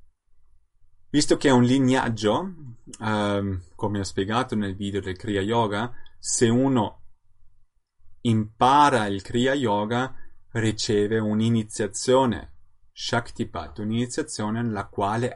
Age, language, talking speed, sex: 30-49, Italian, 100 wpm, male